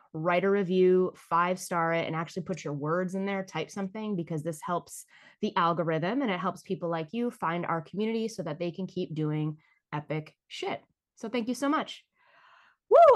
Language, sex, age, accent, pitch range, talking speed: English, female, 20-39, American, 170-215 Hz, 190 wpm